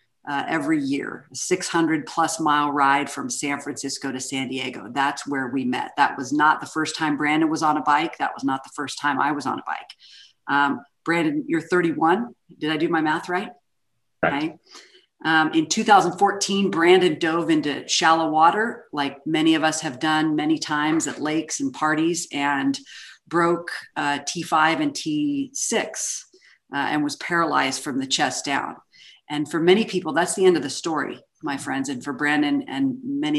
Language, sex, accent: English, female, American